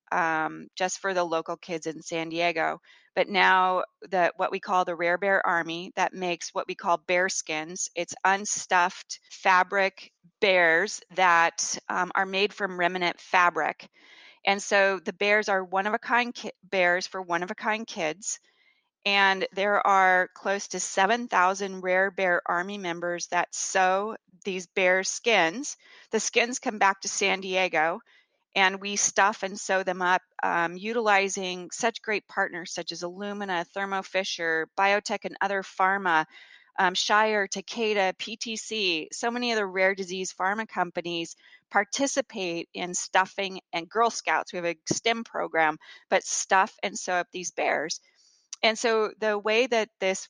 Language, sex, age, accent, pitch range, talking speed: English, female, 30-49, American, 175-205 Hz, 160 wpm